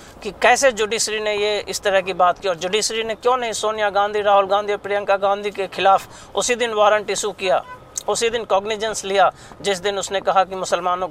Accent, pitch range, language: native, 175-220 Hz, Hindi